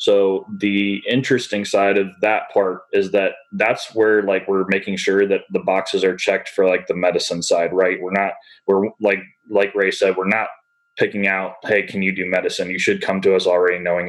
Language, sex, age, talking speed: English, male, 20-39, 210 wpm